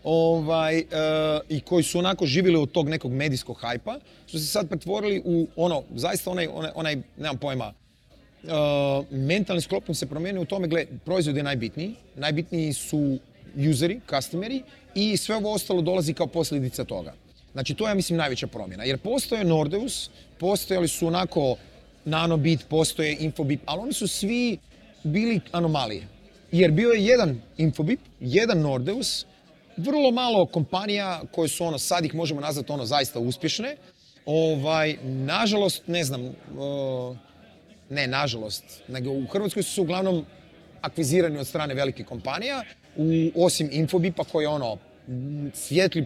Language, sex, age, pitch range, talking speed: Croatian, male, 30-49, 145-180 Hz, 145 wpm